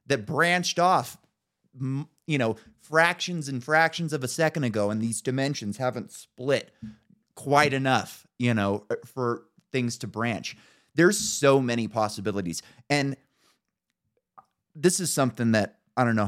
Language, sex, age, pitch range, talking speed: English, male, 30-49, 105-135 Hz, 135 wpm